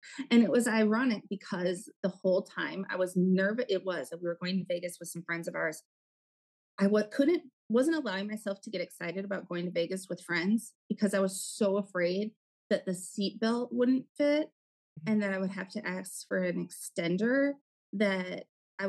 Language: English